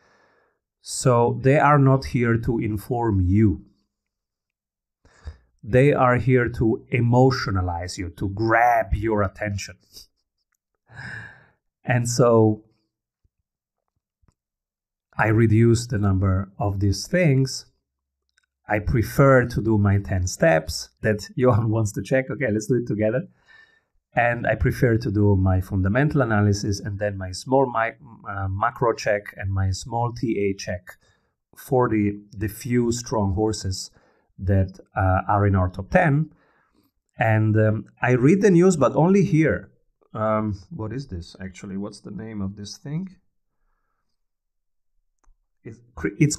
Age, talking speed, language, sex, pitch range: 40-59, 125 wpm, English, male, 100-125 Hz